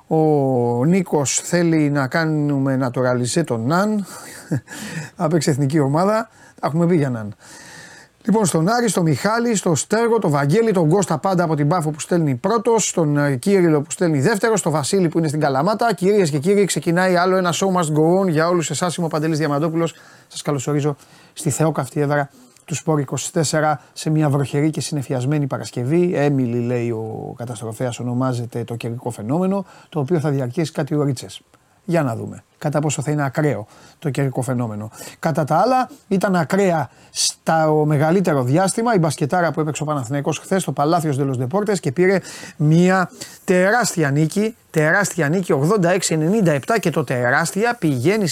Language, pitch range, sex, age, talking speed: Greek, 145-180 Hz, male, 30-49, 165 wpm